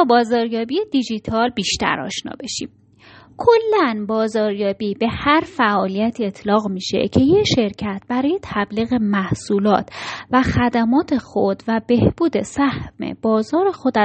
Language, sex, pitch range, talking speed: Persian, female, 205-255 Hz, 110 wpm